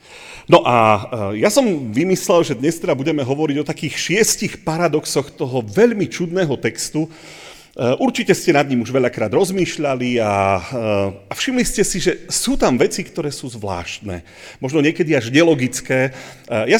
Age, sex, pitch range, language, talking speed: 40-59, male, 115-160 Hz, Slovak, 150 wpm